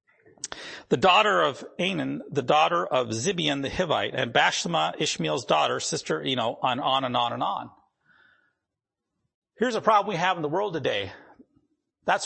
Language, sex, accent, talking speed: English, male, American, 160 wpm